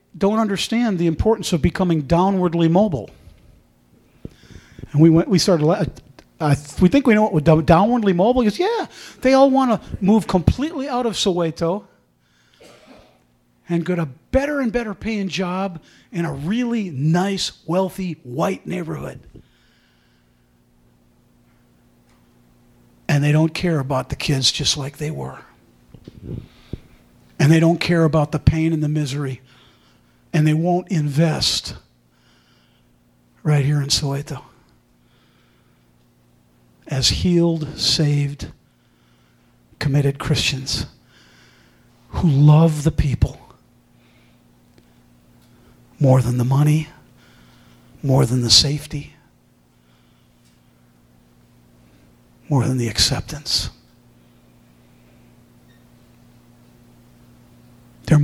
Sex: male